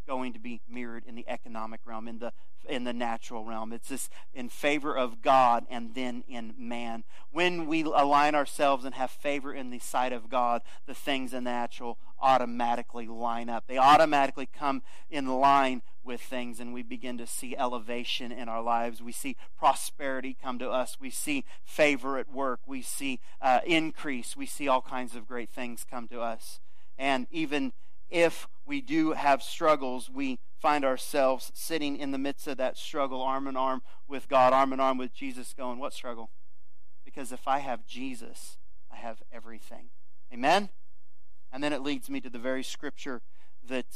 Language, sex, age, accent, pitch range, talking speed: English, male, 40-59, American, 120-155 Hz, 185 wpm